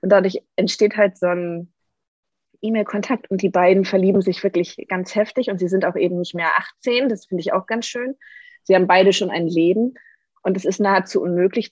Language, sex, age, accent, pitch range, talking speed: German, female, 20-39, German, 175-210 Hz, 205 wpm